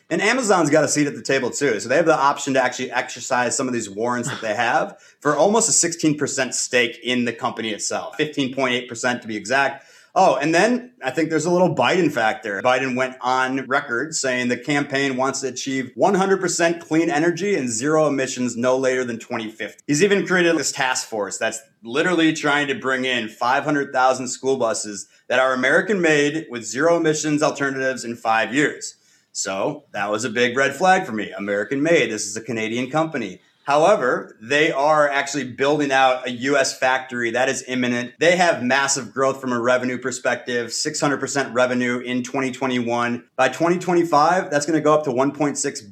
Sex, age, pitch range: male, 30-49, 125-150 Hz